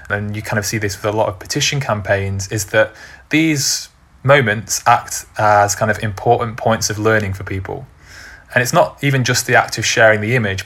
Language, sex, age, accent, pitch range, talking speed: English, male, 20-39, British, 105-125 Hz, 210 wpm